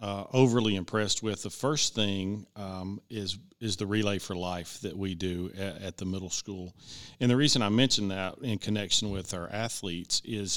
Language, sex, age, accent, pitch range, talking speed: English, male, 40-59, American, 90-105 Hz, 195 wpm